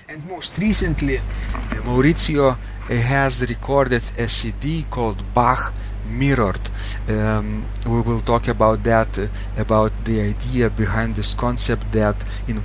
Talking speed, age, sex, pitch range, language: 130 wpm, 40-59, male, 100-120 Hz, English